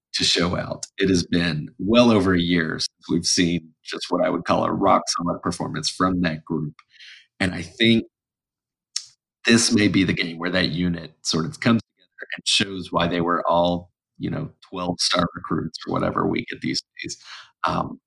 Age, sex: 30-49, male